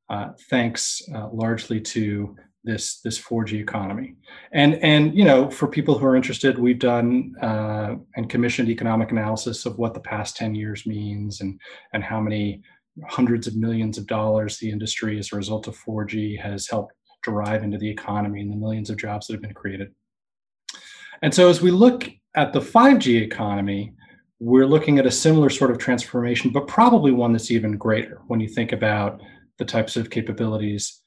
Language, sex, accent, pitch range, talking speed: English, male, American, 110-125 Hz, 180 wpm